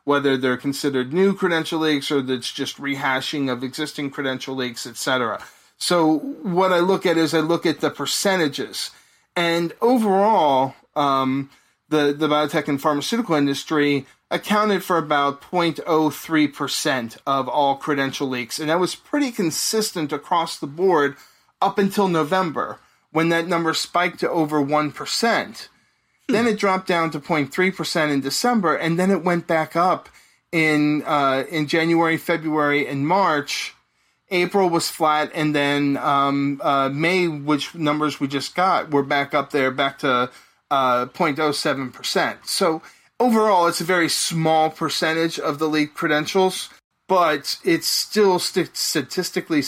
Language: English